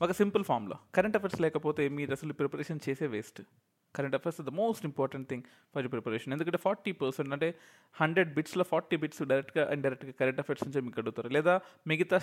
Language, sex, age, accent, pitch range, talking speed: Telugu, male, 20-39, native, 135-175 Hz, 180 wpm